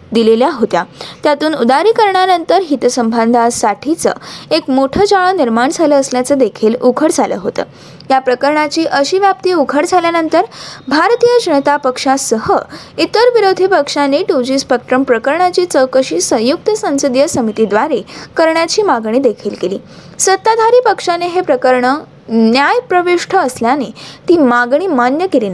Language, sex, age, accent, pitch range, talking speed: Marathi, female, 20-39, native, 255-365 Hz, 105 wpm